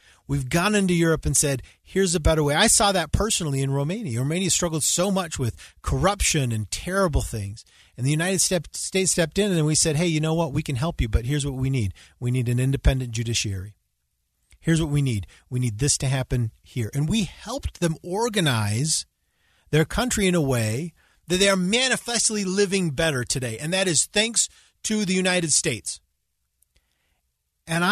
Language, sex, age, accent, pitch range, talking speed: English, male, 40-59, American, 110-175 Hz, 190 wpm